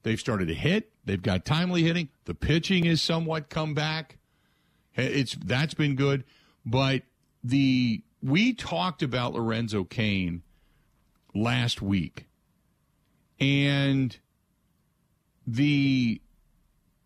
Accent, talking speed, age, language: American, 100 wpm, 50-69, English